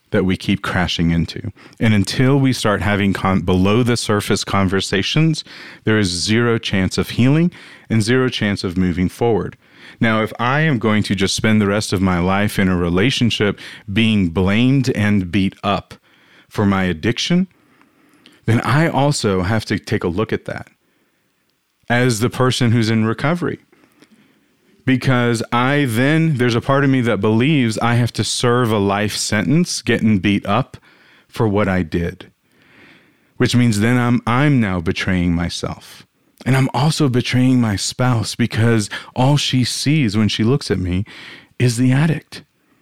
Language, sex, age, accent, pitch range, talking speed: English, male, 40-59, American, 100-130 Hz, 165 wpm